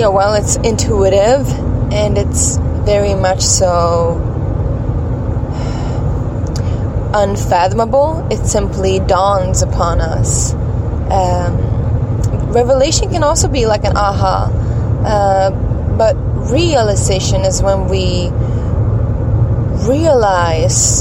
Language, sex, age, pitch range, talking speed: English, female, 20-39, 100-115 Hz, 85 wpm